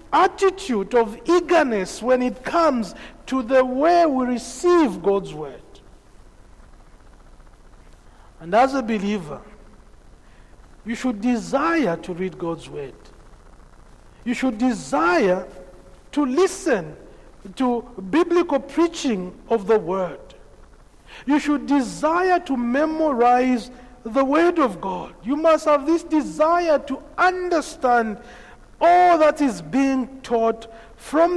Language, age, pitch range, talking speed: English, 50-69, 220-310 Hz, 110 wpm